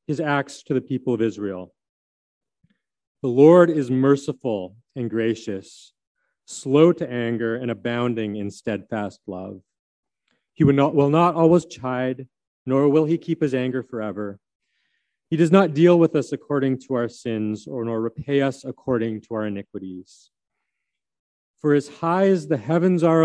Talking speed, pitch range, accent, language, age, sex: 150 wpm, 110-150 Hz, American, English, 40-59, male